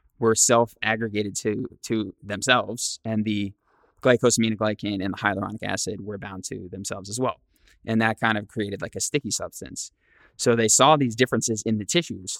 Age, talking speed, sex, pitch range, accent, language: 20-39, 170 wpm, male, 100-115 Hz, American, English